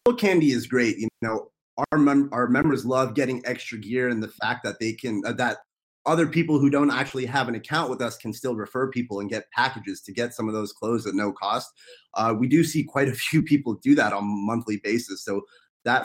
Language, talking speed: English, 235 wpm